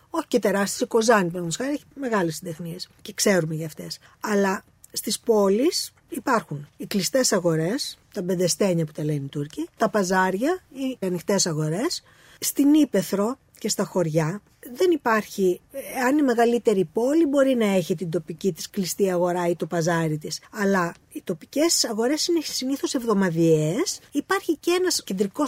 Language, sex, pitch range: Greek, female, 180-280 Hz